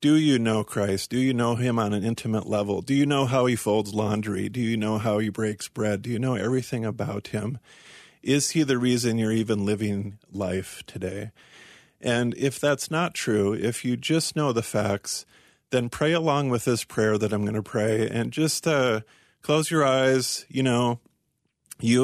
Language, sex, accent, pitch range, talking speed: English, male, American, 105-125 Hz, 195 wpm